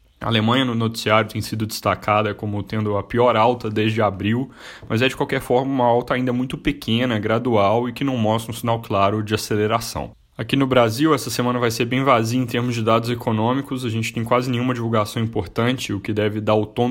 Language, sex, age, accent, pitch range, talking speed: Portuguese, male, 10-29, Brazilian, 105-125 Hz, 215 wpm